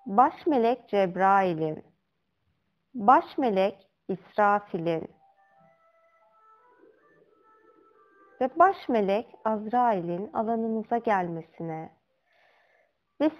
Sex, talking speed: female, 45 wpm